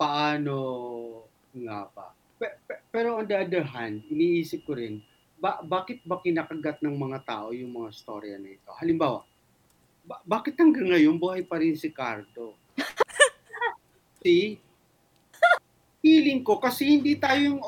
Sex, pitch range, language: male, 155-250 Hz, English